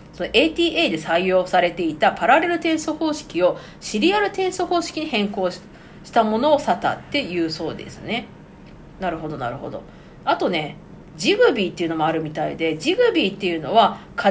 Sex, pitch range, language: female, 170-290 Hz, Japanese